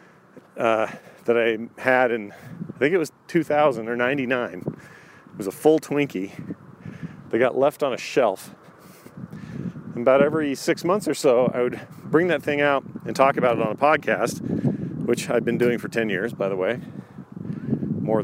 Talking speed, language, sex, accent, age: 180 wpm, English, male, American, 40-59